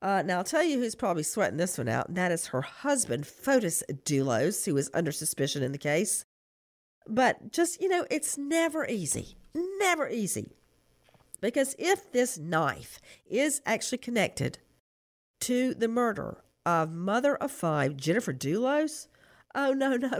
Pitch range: 180-275 Hz